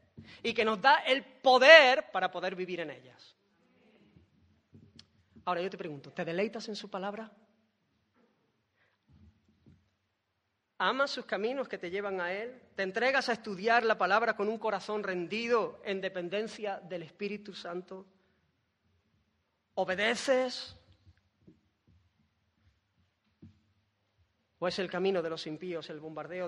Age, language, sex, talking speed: 30-49, Spanish, female, 120 wpm